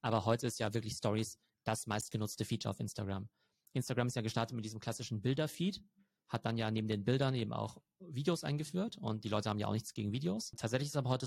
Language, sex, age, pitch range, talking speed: German, male, 30-49, 110-130 Hz, 230 wpm